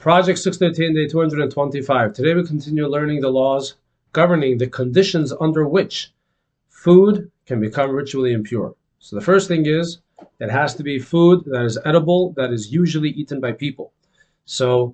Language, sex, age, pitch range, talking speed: English, male, 40-59, 130-175 Hz, 160 wpm